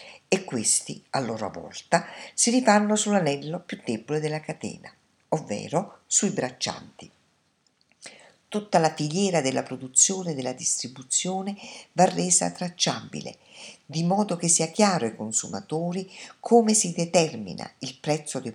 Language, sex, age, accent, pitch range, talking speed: Italian, female, 50-69, native, 140-195 Hz, 125 wpm